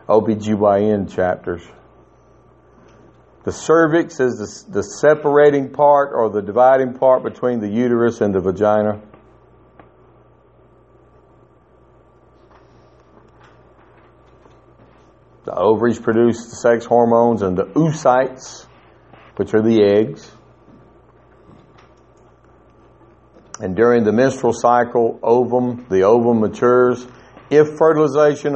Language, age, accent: English, 60-79, American